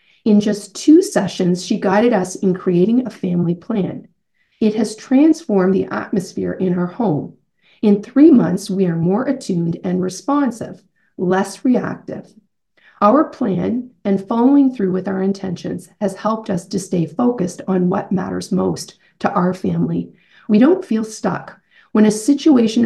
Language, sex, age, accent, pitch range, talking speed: English, female, 40-59, American, 185-225 Hz, 155 wpm